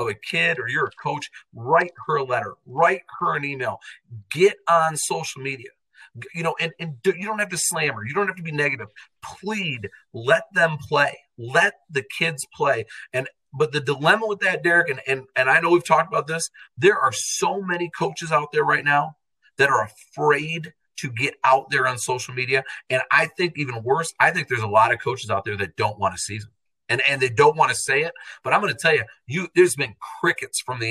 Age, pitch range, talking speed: 40-59, 130-165 Hz, 230 wpm